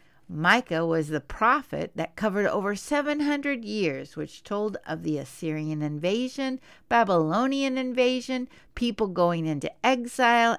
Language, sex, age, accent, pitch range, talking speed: English, female, 60-79, American, 175-255 Hz, 120 wpm